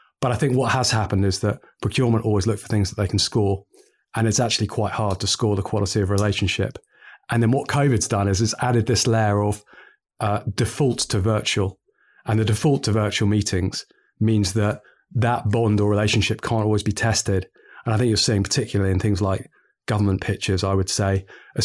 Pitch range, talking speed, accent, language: 105-115 Hz, 210 wpm, British, English